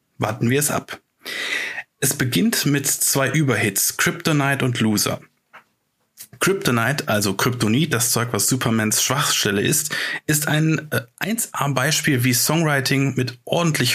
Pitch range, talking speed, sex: 125-160 Hz, 135 wpm, male